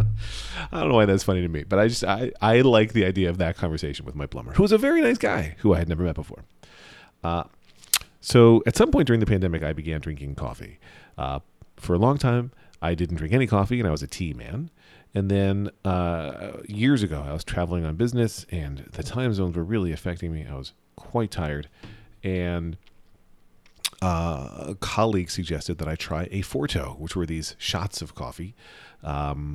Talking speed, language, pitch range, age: 205 wpm, English, 80-110 Hz, 40-59